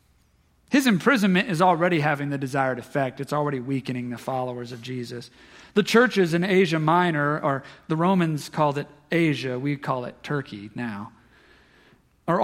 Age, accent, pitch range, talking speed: 40-59, American, 130-175 Hz, 155 wpm